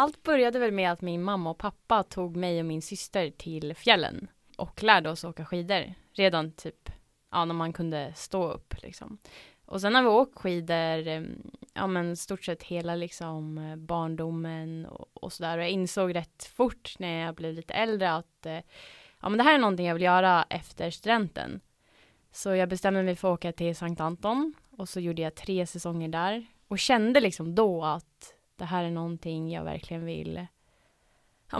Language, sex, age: English, female, 20-39